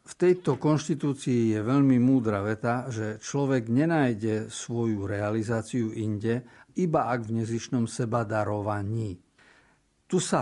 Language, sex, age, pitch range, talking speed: Slovak, male, 50-69, 110-130 Hz, 115 wpm